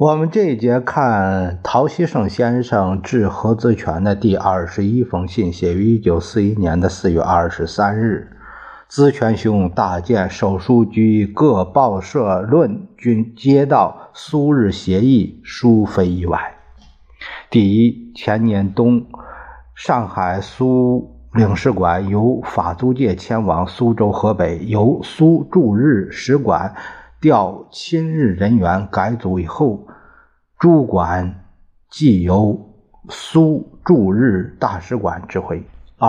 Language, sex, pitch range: Chinese, male, 90-120 Hz